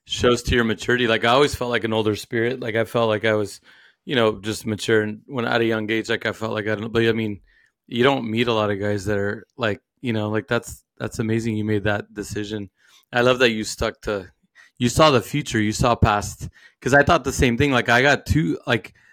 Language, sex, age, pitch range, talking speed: English, male, 20-39, 110-125 Hz, 255 wpm